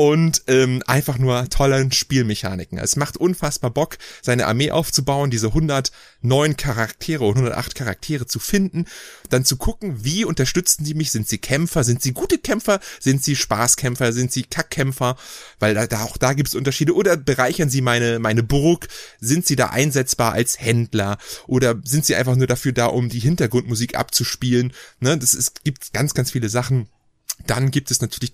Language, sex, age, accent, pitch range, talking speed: German, male, 30-49, German, 120-160 Hz, 175 wpm